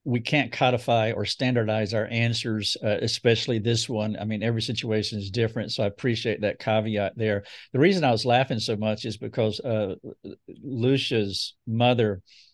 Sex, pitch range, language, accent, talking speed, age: male, 110-125 Hz, English, American, 170 wpm, 50-69